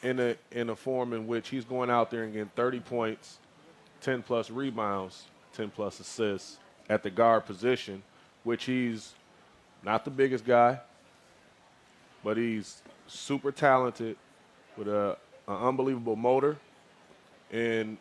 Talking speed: 135 wpm